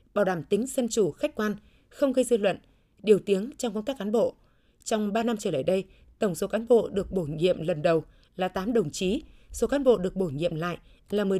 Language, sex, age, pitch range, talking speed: Vietnamese, female, 20-39, 185-235 Hz, 240 wpm